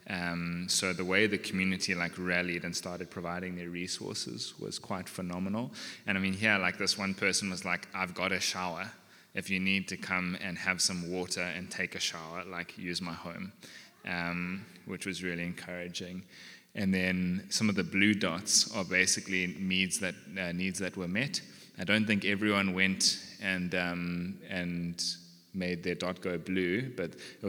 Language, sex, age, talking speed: English, male, 20-39, 180 wpm